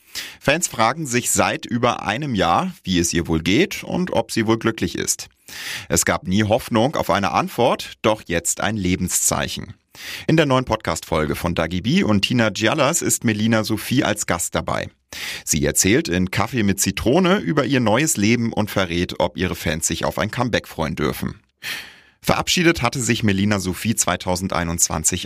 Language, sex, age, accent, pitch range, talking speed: German, male, 30-49, German, 85-110 Hz, 170 wpm